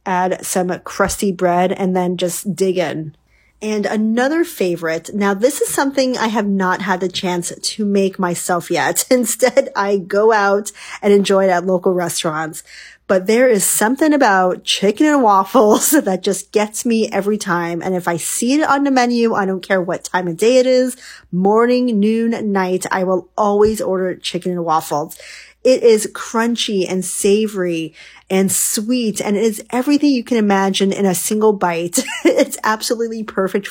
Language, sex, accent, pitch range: English, female, American, 180-225 Hz